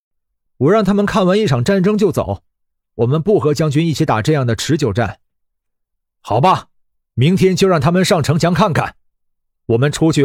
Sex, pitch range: male, 115-170 Hz